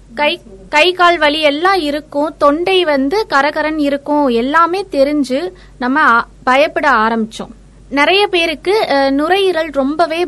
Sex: female